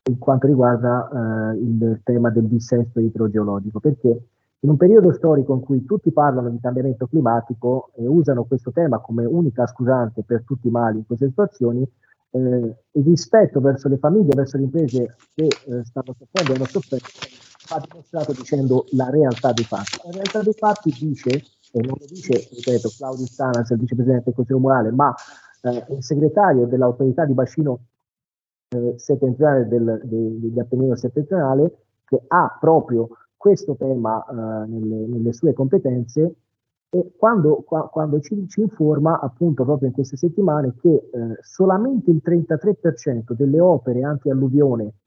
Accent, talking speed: native, 155 wpm